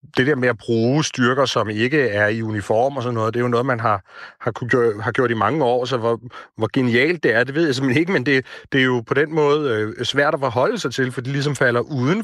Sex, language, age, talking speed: male, Danish, 30-49, 275 wpm